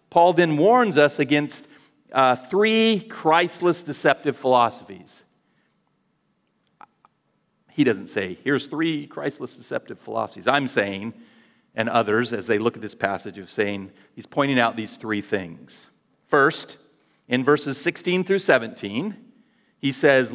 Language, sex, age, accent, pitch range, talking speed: English, male, 40-59, American, 130-185 Hz, 130 wpm